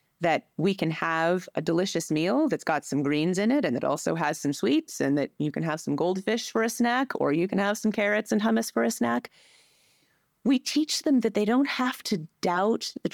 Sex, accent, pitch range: female, American, 160-225 Hz